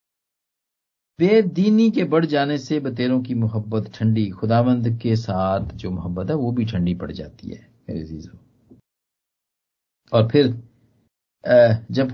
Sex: male